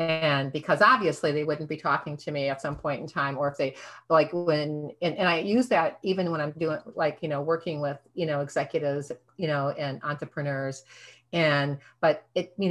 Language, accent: English, American